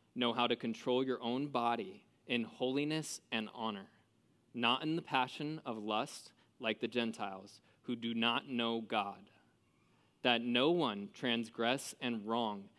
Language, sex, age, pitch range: English, male, 20-39, 115-130 Hz